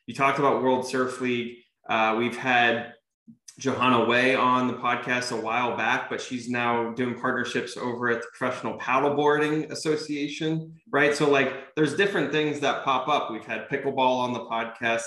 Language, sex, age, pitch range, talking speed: English, male, 20-39, 115-135 Hz, 170 wpm